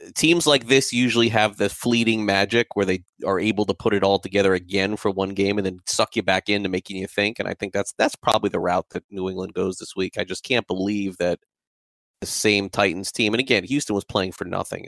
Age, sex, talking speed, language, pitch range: 30-49, male, 245 wpm, English, 100-125 Hz